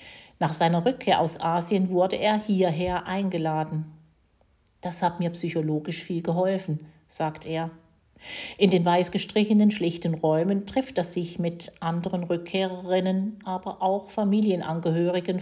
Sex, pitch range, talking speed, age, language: female, 155-190 Hz, 125 wpm, 50-69, German